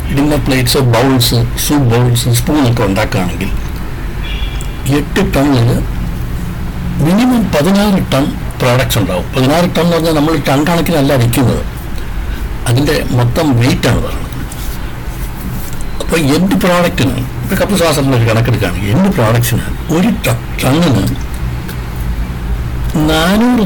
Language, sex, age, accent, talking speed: Malayalam, male, 60-79, native, 95 wpm